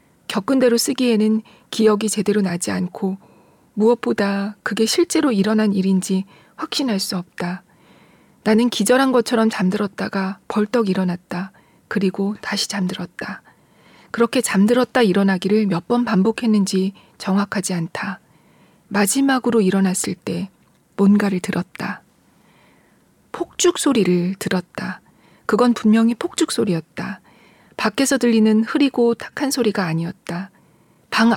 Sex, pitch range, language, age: female, 190-230 Hz, Korean, 40-59